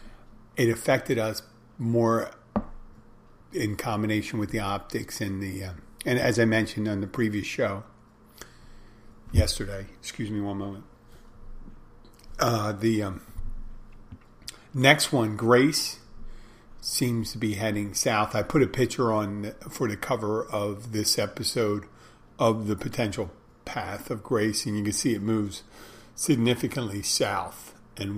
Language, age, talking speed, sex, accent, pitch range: English, 50-69, 130 wpm, male, American, 100-115 Hz